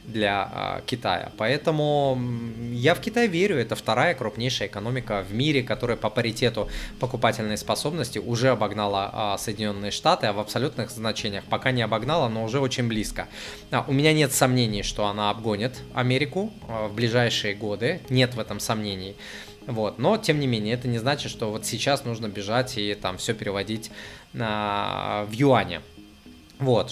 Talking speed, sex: 150 wpm, male